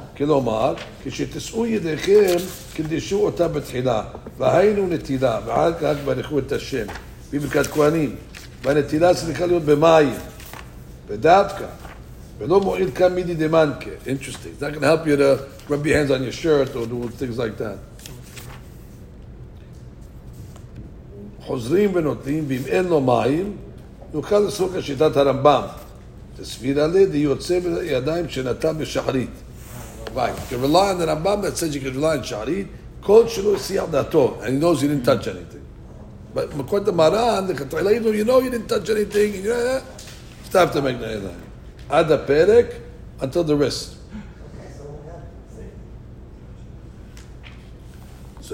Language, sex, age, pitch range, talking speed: English, male, 60-79, 130-180 Hz, 70 wpm